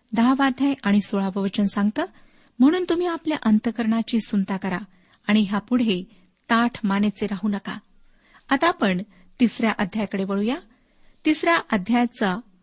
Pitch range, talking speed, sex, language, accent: 205-250 Hz, 115 wpm, female, Marathi, native